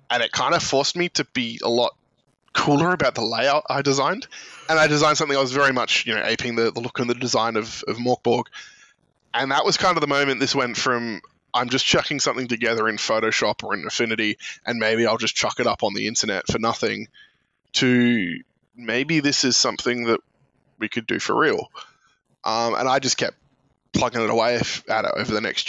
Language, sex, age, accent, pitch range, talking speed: English, male, 20-39, Australian, 115-140 Hz, 215 wpm